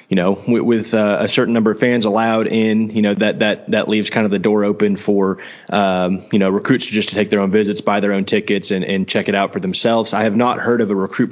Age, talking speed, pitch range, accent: 30-49, 270 wpm, 100-115 Hz, American